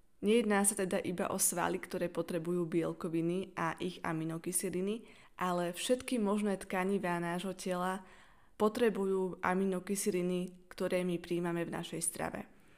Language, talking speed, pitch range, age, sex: Slovak, 120 wpm, 175-205 Hz, 20-39, female